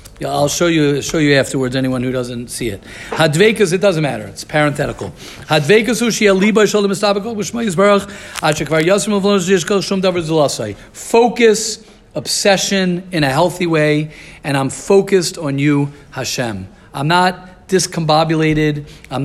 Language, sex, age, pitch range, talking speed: English, male, 50-69, 145-185 Hz, 115 wpm